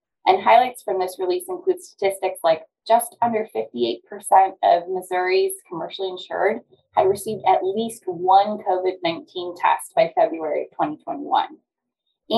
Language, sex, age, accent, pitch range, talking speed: English, female, 20-39, American, 175-230 Hz, 125 wpm